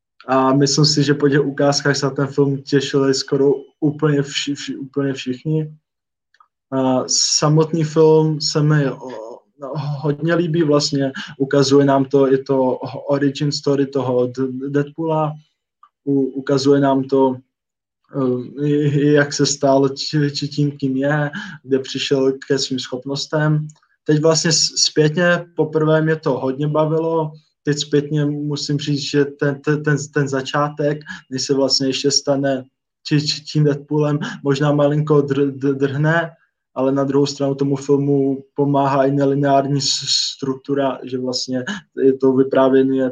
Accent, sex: native, male